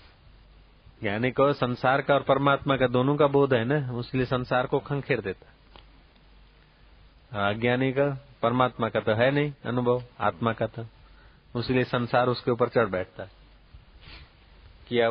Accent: native